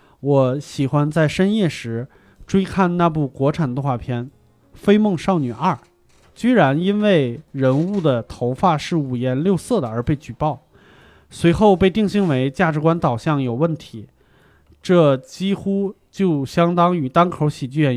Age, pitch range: 30-49, 125-175 Hz